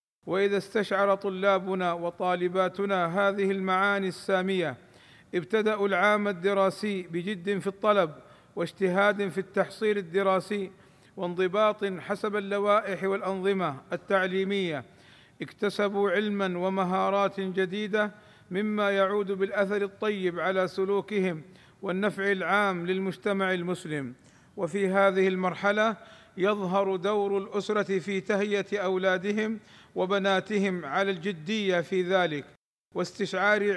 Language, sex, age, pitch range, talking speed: Arabic, male, 50-69, 185-205 Hz, 90 wpm